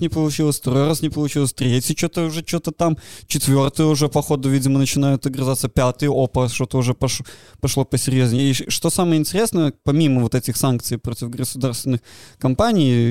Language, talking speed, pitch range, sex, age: Russian, 160 wpm, 125-150 Hz, male, 20-39